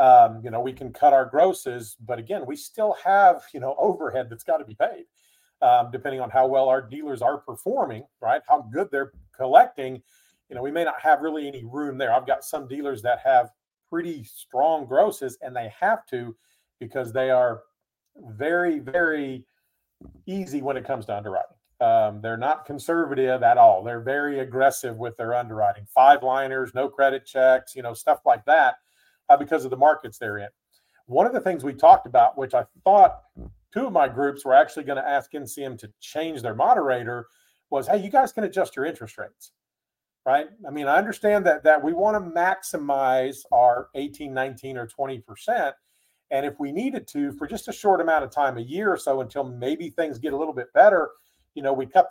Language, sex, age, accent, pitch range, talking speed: English, male, 40-59, American, 130-180 Hz, 200 wpm